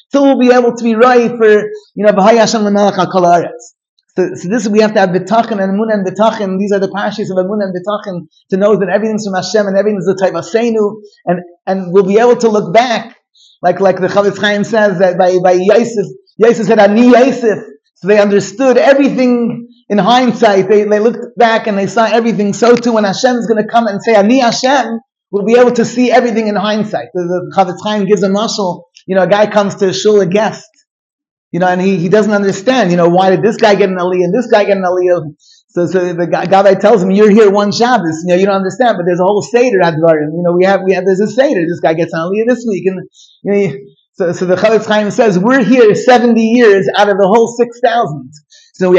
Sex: male